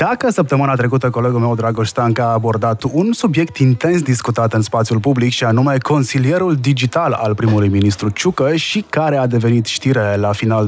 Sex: male